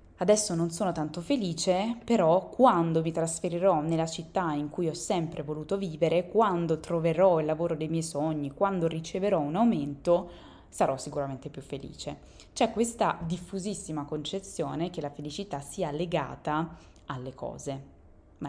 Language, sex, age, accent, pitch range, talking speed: Italian, female, 20-39, native, 145-175 Hz, 145 wpm